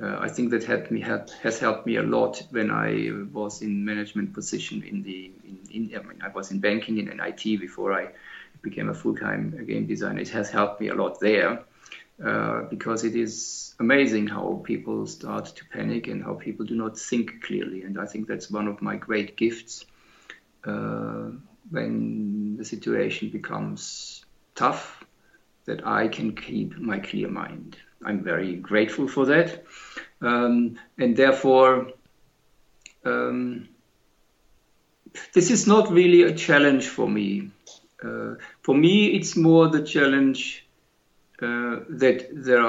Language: English